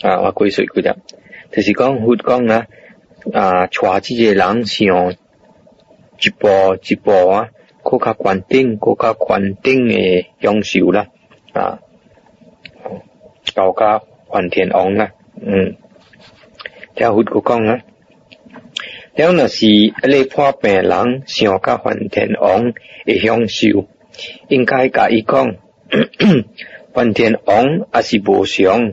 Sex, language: male, English